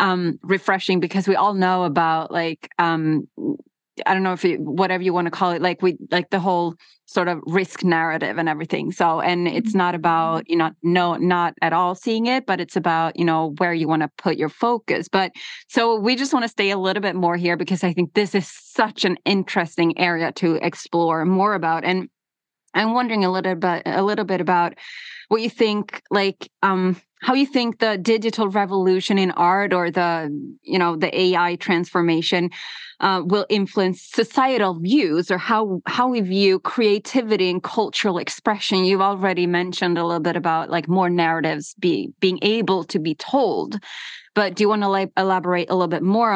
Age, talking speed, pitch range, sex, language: 20-39, 195 wpm, 170-205 Hz, female, English